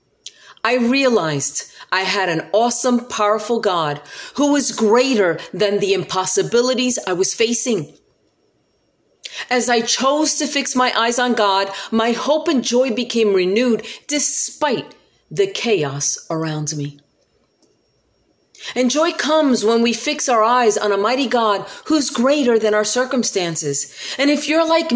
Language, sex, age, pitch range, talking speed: English, female, 40-59, 215-280 Hz, 140 wpm